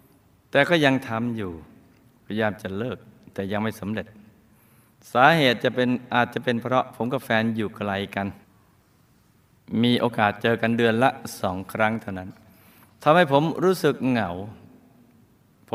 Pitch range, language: 100-125 Hz, Thai